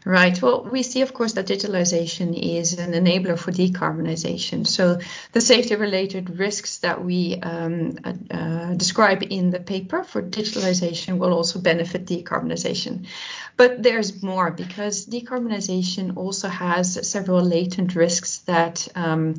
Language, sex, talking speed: English, female, 135 wpm